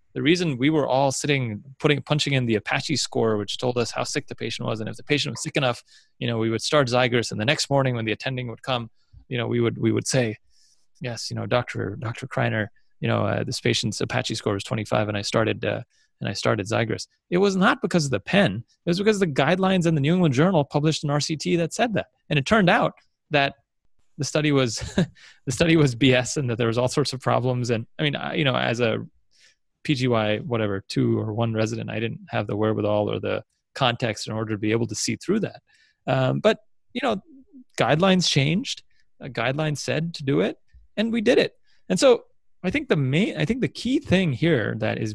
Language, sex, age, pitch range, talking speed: English, male, 30-49, 115-155 Hz, 235 wpm